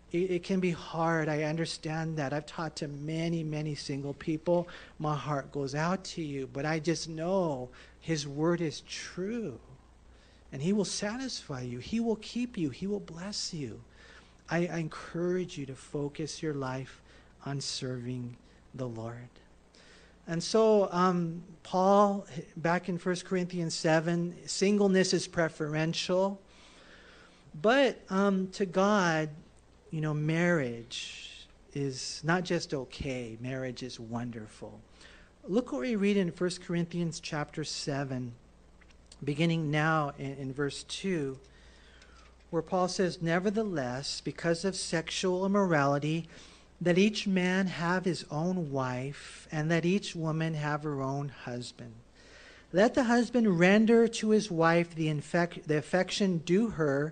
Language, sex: English, male